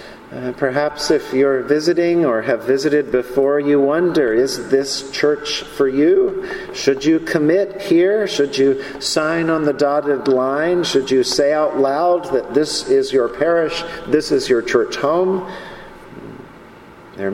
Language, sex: English, male